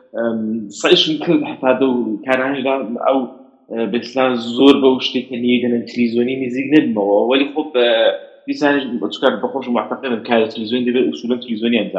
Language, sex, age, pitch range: English, male, 30-49, 110-140 Hz